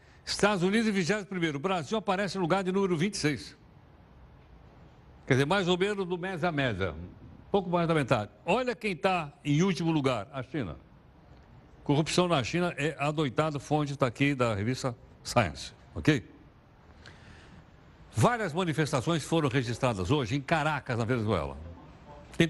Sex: male